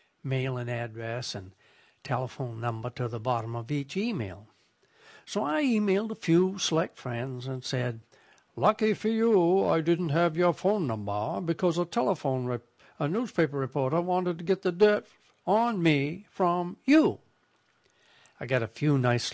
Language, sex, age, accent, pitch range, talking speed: English, male, 60-79, American, 125-180 Hz, 160 wpm